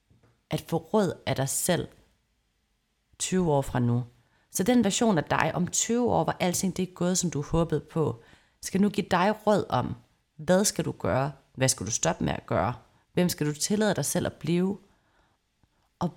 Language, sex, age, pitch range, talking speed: Danish, female, 30-49, 145-195 Hz, 195 wpm